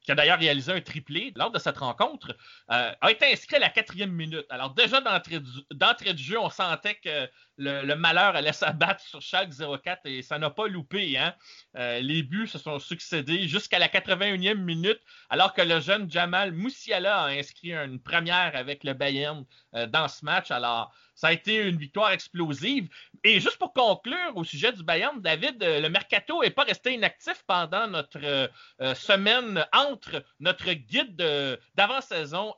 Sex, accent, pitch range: male, Canadian, 155-220 Hz